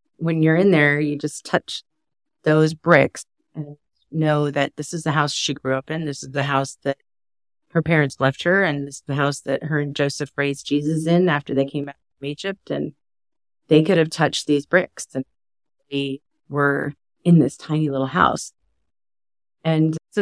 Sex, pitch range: female, 140-165 Hz